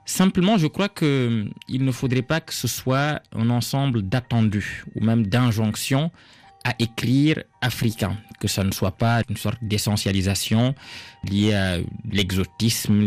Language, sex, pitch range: French, male, 110-140 Hz